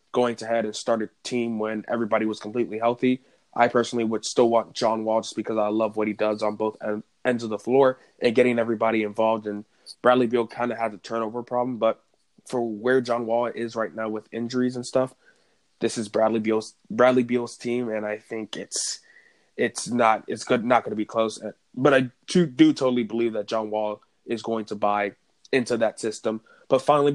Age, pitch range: 20-39, 110-120 Hz